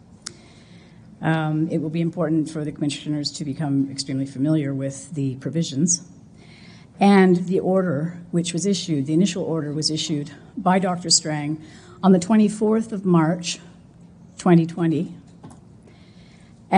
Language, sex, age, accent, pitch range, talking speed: English, female, 50-69, American, 155-185 Hz, 125 wpm